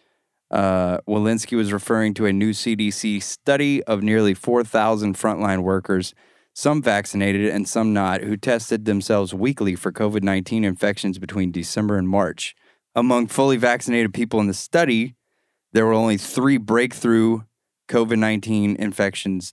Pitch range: 100-115 Hz